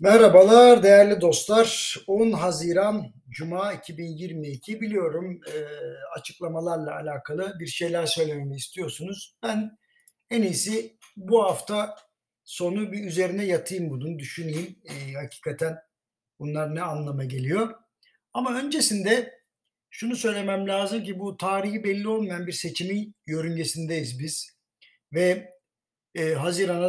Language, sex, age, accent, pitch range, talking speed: Turkish, male, 60-79, native, 160-205 Hz, 105 wpm